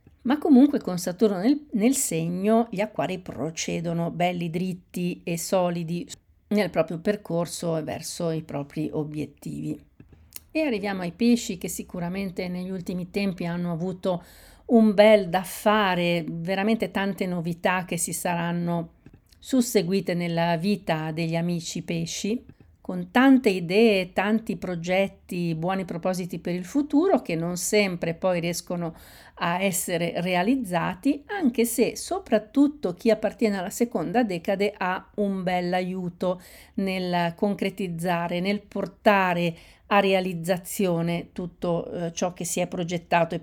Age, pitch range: 50-69, 170-210 Hz